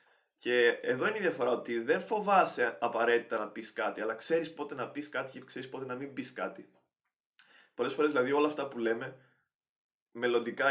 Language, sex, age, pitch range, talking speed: Greek, male, 20-39, 120-175 Hz, 185 wpm